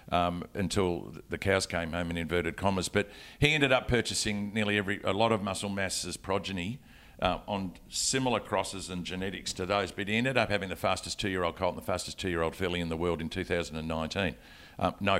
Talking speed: 195 wpm